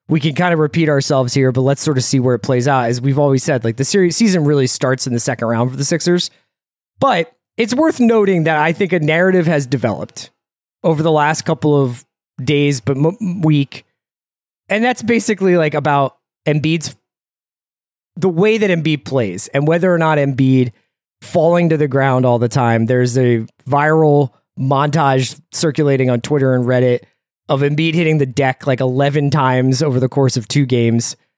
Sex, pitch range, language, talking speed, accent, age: male, 135-170 Hz, English, 185 wpm, American, 20-39